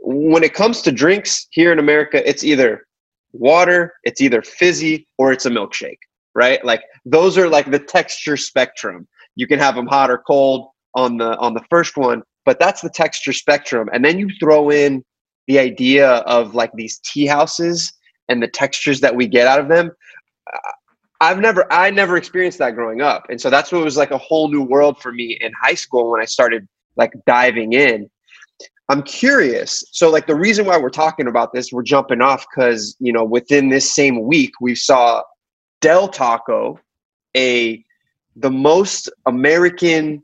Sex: male